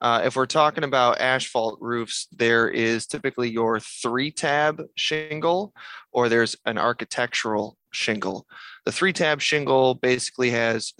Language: English